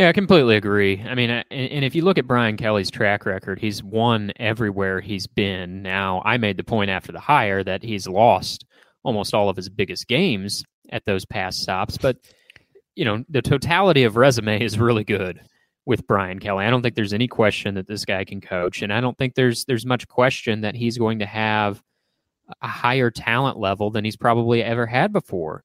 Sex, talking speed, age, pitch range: male, 210 wpm, 20-39, 100-120 Hz